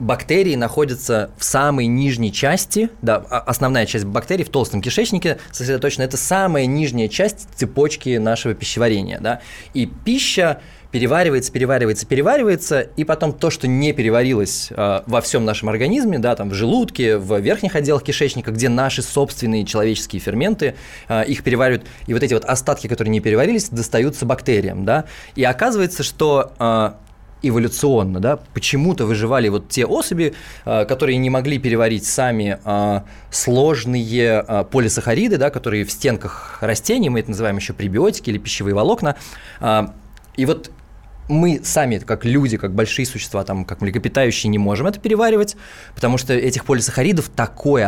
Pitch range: 110-145 Hz